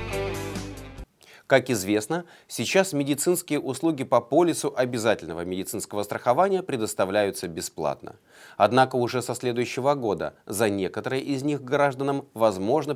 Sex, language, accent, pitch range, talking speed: male, Russian, native, 105-140 Hz, 105 wpm